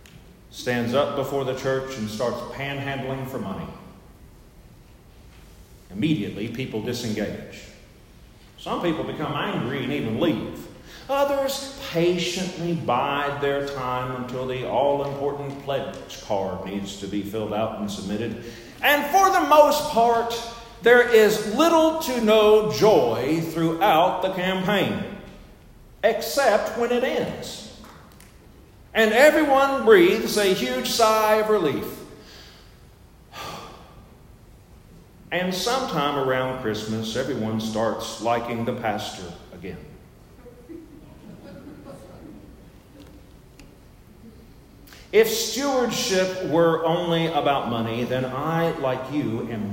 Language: English